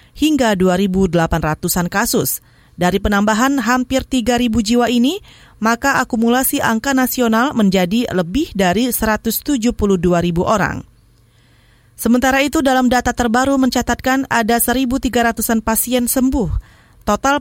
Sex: female